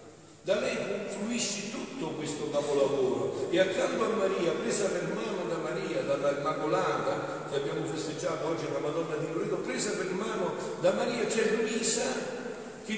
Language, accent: Italian, native